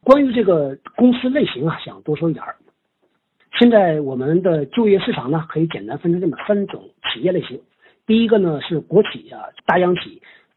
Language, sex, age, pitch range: Chinese, male, 50-69, 150-200 Hz